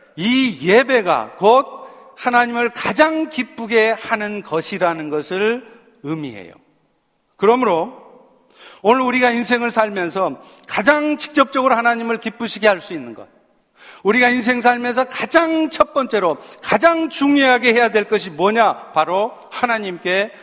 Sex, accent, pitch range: male, native, 195-245 Hz